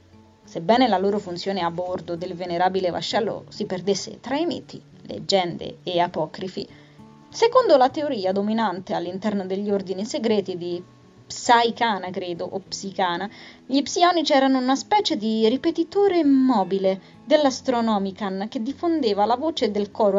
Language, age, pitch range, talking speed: Italian, 20-39, 190-270 Hz, 135 wpm